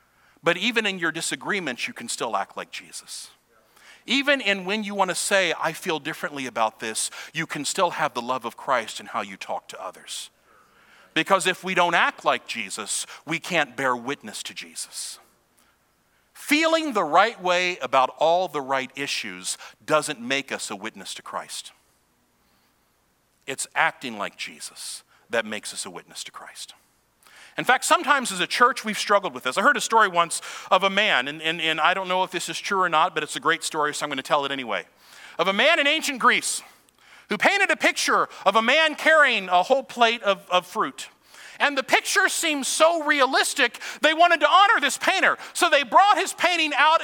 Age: 50-69